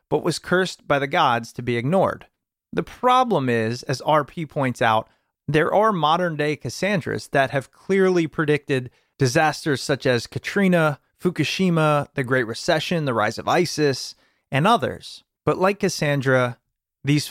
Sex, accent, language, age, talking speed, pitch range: male, American, English, 30-49, 145 wpm, 125-175 Hz